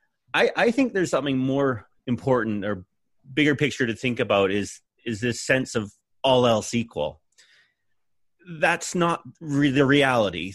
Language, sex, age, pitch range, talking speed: English, male, 30-49, 105-140 Hz, 140 wpm